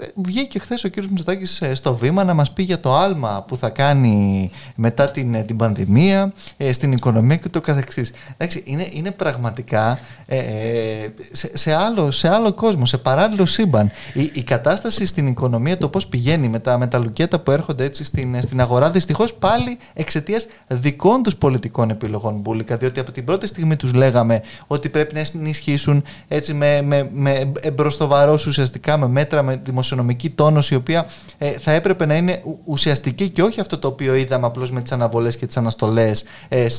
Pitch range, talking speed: 125-165 Hz, 175 wpm